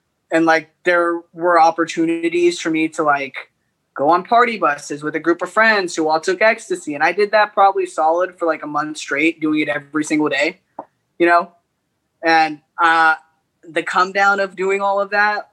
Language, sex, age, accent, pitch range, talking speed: English, male, 20-39, American, 150-185 Hz, 195 wpm